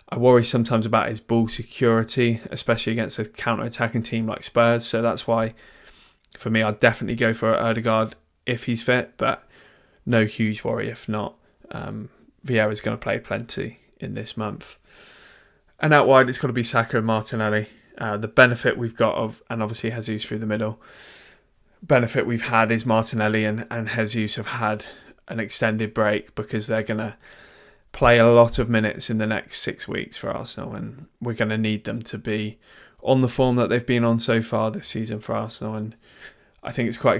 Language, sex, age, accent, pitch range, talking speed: English, male, 20-39, British, 110-115 Hz, 190 wpm